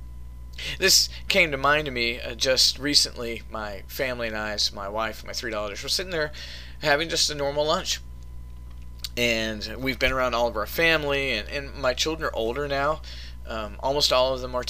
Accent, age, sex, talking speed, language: American, 20-39, male, 195 wpm, English